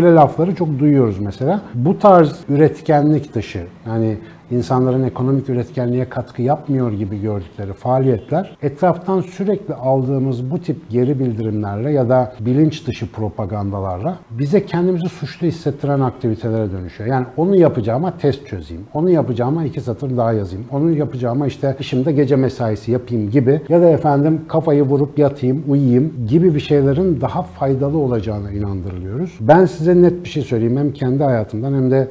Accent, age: native, 60-79